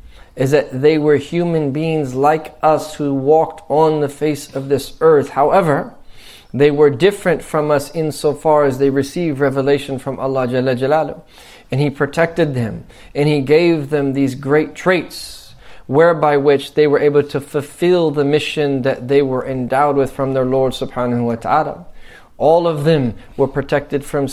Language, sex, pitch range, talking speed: English, male, 130-155 Hz, 165 wpm